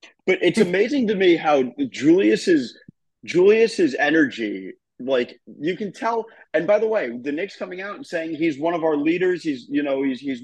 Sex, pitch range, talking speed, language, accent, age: male, 140-230 Hz, 190 wpm, English, American, 30-49